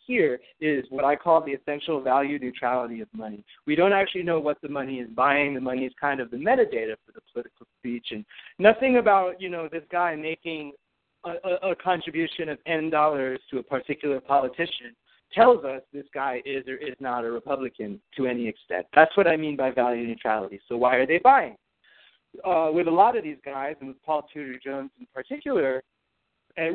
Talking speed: 200 wpm